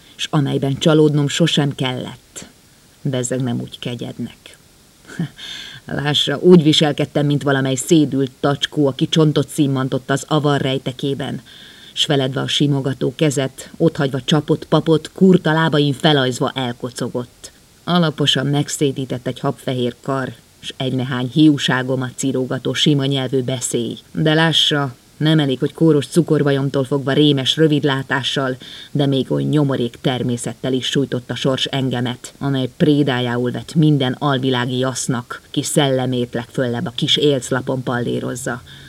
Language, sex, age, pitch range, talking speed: Hungarian, female, 30-49, 130-155 Hz, 120 wpm